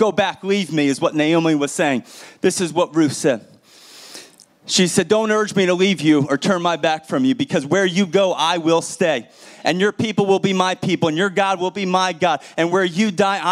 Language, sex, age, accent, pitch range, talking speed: English, male, 30-49, American, 160-205 Hz, 235 wpm